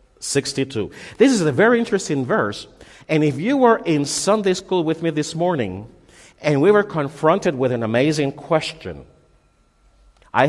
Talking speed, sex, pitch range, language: 155 wpm, male, 115-170 Hz, English